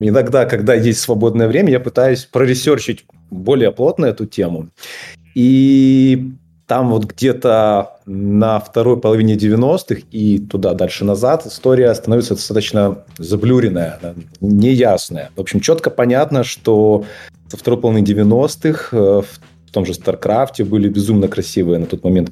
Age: 20-39